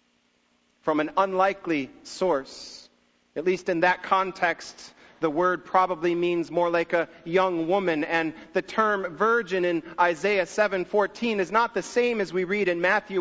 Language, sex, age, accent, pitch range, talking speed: English, male, 40-59, American, 120-195 Hz, 155 wpm